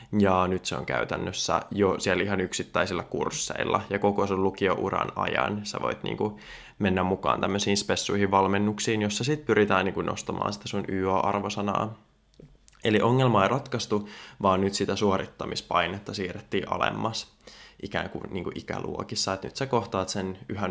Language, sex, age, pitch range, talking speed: Finnish, male, 20-39, 95-110 Hz, 150 wpm